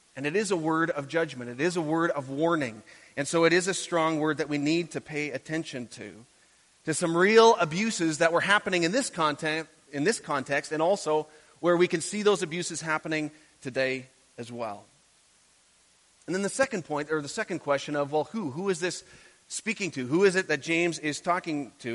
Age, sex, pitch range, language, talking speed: 30-49, male, 145-175 Hz, English, 205 wpm